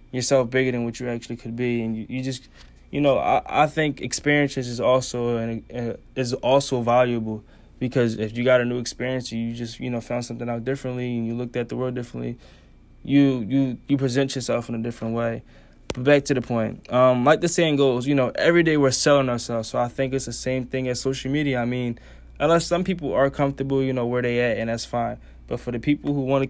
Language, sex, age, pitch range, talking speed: English, male, 20-39, 120-135 Hz, 240 wpm